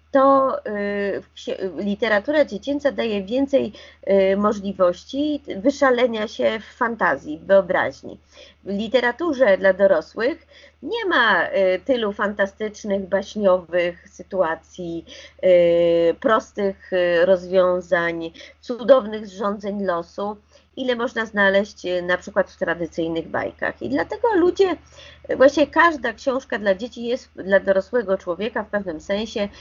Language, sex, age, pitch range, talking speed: Polish, female, 30-49, 175-235 Hz, 110 wpm